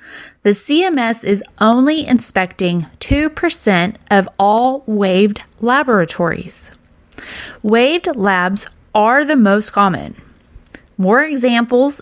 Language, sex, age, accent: English, female, 20-39, American